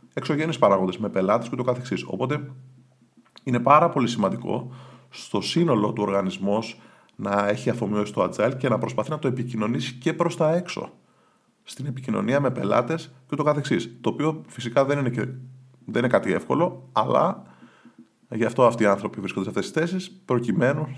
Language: Greek